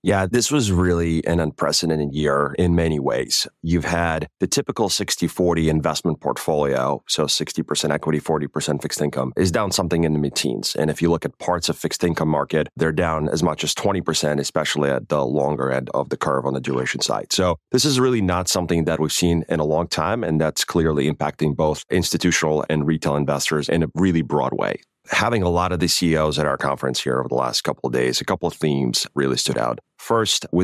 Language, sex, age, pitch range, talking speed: English, male, 30-49, 75-90 Hz, 215 wpm